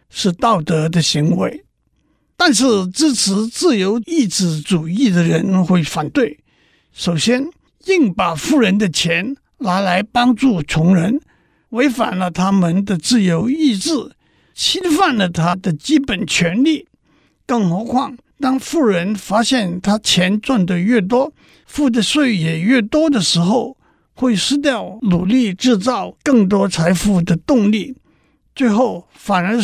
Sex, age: male, 60-79